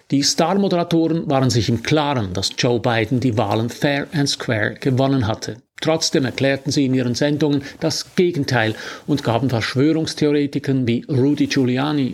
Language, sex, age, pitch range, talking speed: German, male, 50-69, 125-150 Hz, 150 wpm